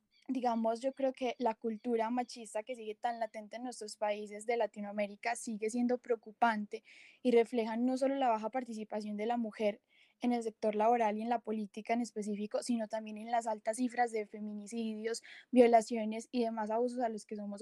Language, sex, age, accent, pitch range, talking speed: Spanish, female, 10-29, Colombian, 220-245 Hz, 185 wpm